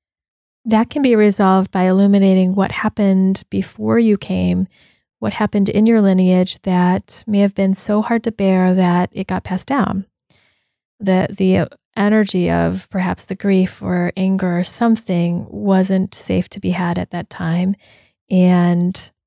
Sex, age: female, 20-39